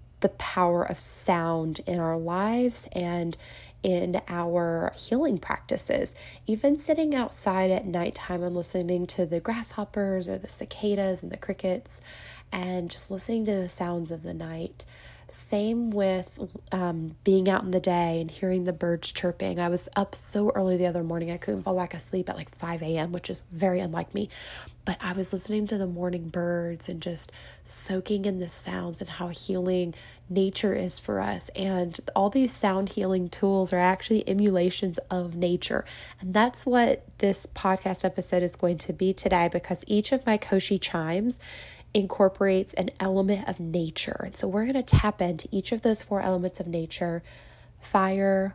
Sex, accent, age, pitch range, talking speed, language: female, American, 20-39, 175-210 Hz, 175 wpm, English